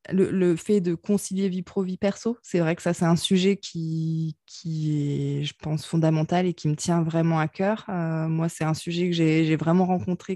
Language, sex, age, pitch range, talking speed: French, female, 20-39, 160-195 Hz, 225 wpm